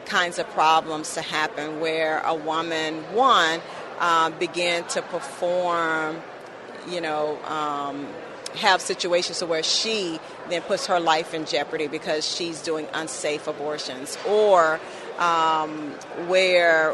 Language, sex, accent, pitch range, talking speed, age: English, female, American, 160-180 Hz, 120 wpm, 40-59